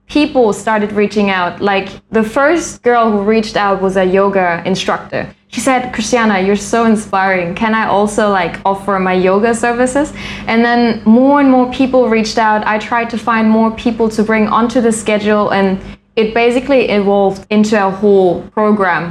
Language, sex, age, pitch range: Thai, female, 10-29, 195-230 Hz